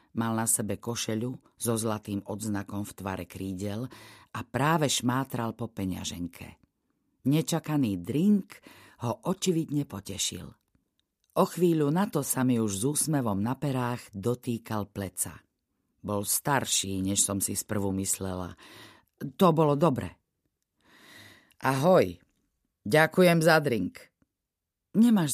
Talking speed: 115 wpm